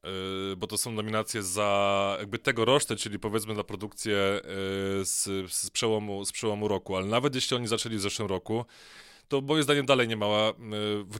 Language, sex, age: Polish, male, 20-39